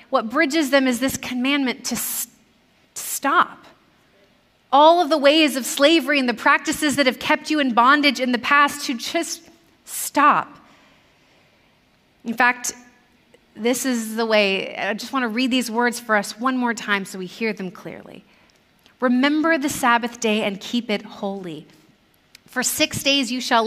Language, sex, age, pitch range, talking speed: English, female, 30-49, 210-265 Hz, 165 wpm